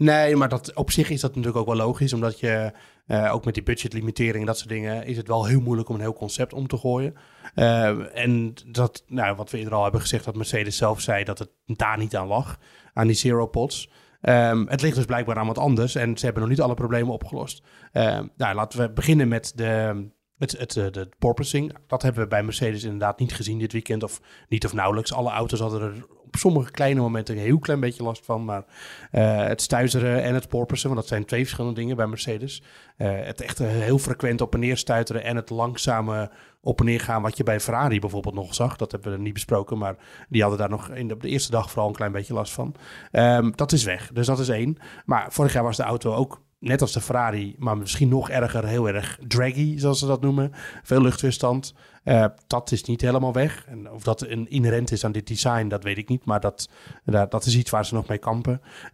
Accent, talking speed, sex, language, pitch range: Dutch, 235 wpm, male, Dutch, 110-125 Hz